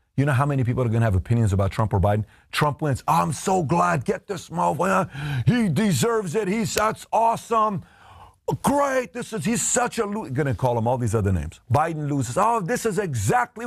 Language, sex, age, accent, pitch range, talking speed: English, male, 40-59, American, 115-185 Hz, 210 wpm